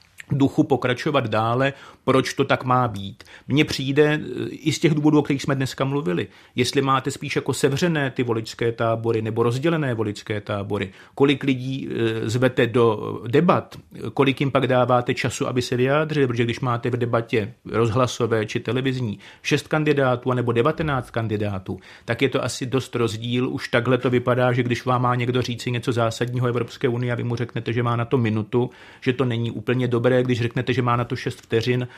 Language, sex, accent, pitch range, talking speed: Czech, male, native, 120-140 Hz, 185 wpm